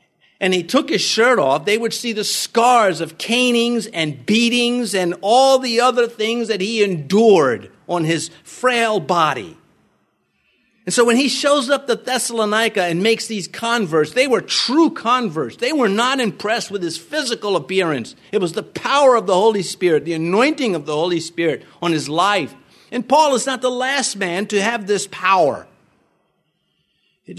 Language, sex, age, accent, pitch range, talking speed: English, male, 50-69, American, 175-235 Hz, 175 wpm